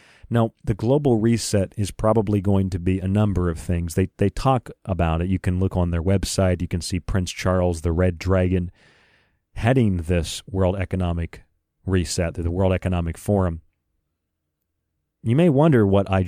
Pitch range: 90-115 Hz